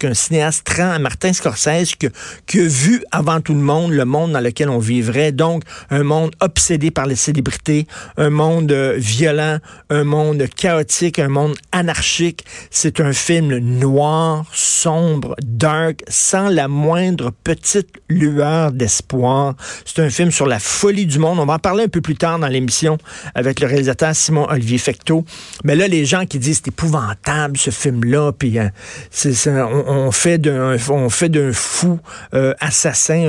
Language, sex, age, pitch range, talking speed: French, male, 50-69, 140-165 Hz, 170 wpm